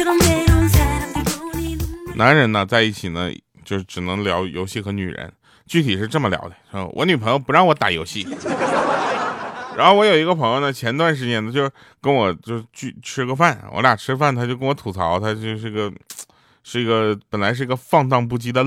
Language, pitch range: Chinese, 105-160 Hz